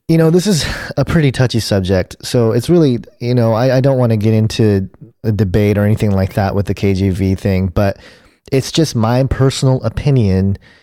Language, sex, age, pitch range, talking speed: English, male, 30-49, 105-130 Hz, 200 wpm